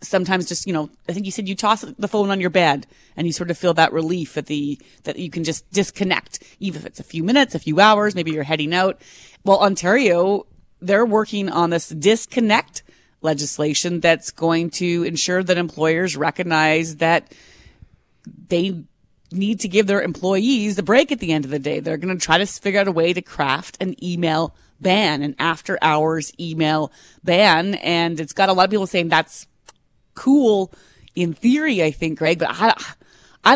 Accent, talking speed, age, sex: American, 195 wpm, 30-49, female